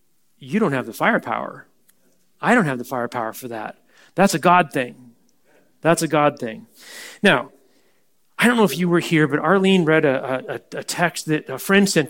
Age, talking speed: 40-59, 190 wpm